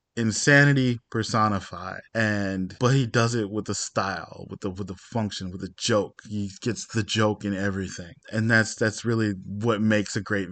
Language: English